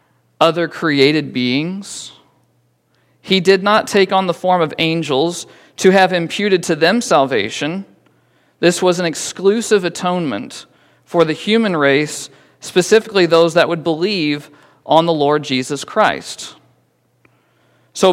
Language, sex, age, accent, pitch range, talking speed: English, male, 40-59, American, 155-205 Hz, 125 wpm